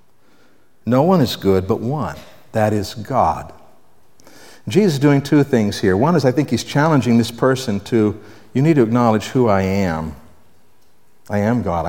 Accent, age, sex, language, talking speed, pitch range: American, 60-79, male, English, 170 wpm, 105-150 Hz